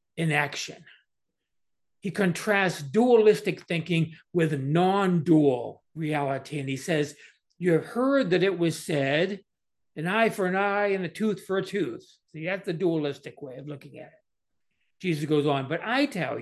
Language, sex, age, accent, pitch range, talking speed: English, male, 60-79, American, 155-205 Hz, 165 wpm